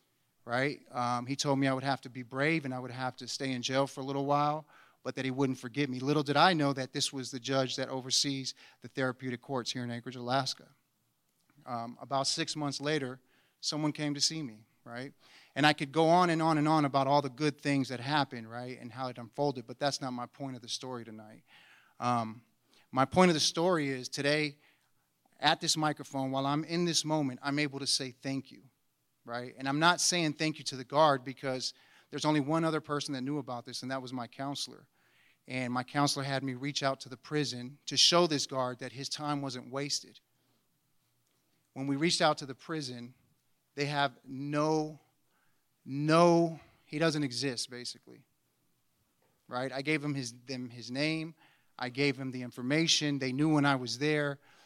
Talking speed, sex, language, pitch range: 205 wpm, male, English, 130-150 Hz